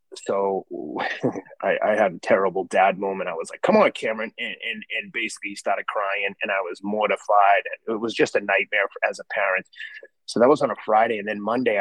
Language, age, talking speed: English, 30-49, 215 wpm